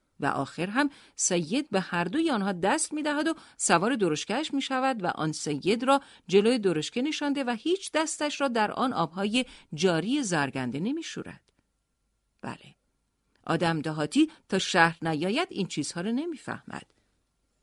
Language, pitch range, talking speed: Persian, 175-275 Hz, 145 wpm